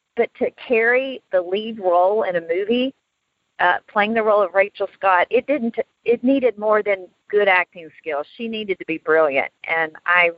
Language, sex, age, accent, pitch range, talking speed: English, female, 50-69, American, 175-230 Hz, 190 wpm